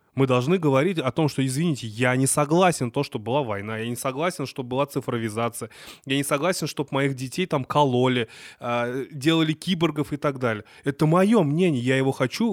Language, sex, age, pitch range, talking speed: Russian, male, 20-39, 125-160 Hz, 185 wpm